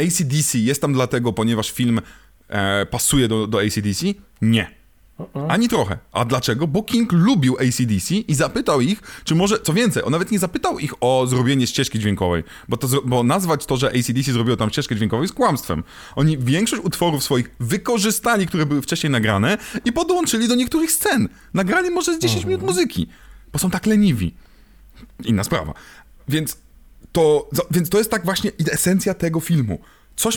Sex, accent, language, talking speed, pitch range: male, native, Polish, 165 wpm, 135-205 Hz